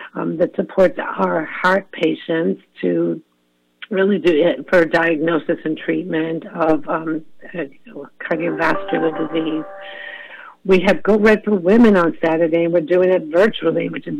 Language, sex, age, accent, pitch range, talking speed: English, female, 60-79, American, 165-185 Hz, 140 wpm